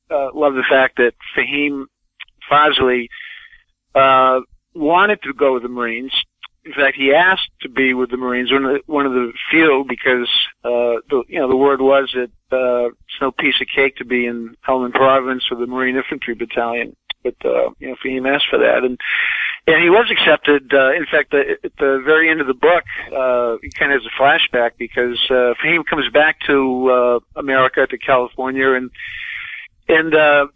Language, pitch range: English, 125-140 Hz